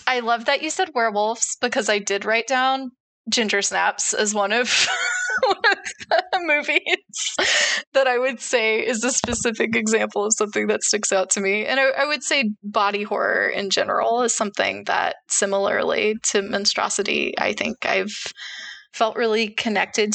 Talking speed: 165 wpm